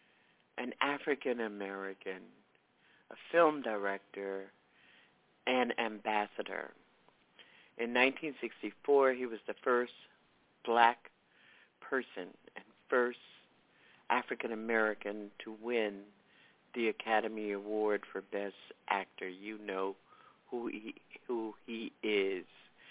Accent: American